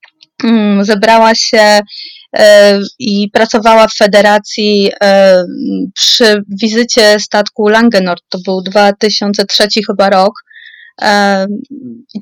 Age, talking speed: 20-39, 80 wpm